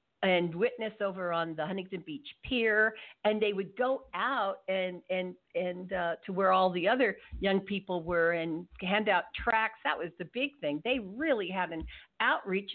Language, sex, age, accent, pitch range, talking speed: English, female, 50-69, American, 175-225 Hz, 185 wpm